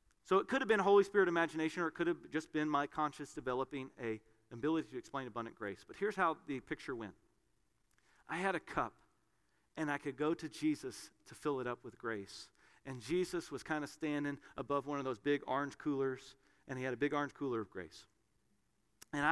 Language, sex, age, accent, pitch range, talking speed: English, male, 40-59, American, 145-220 Hz, 215 wpm